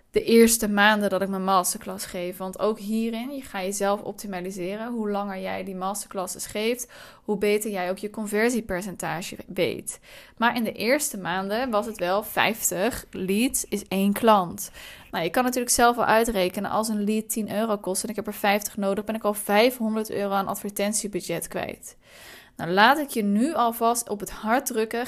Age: 20-39